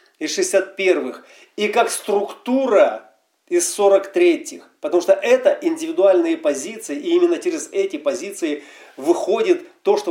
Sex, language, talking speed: male, Russian, 120 wpm